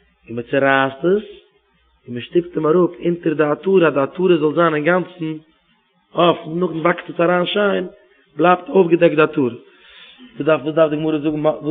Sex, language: male, English